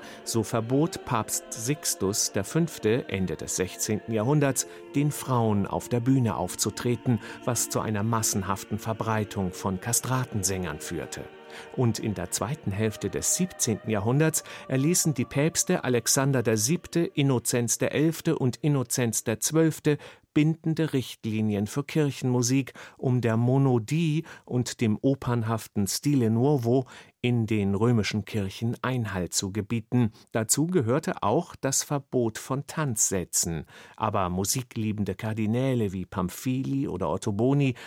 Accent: German